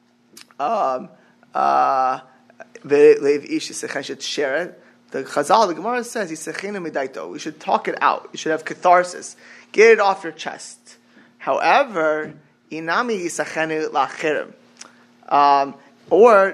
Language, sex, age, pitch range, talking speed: English, male, 20-39, 155-220 Hz, 85 wpm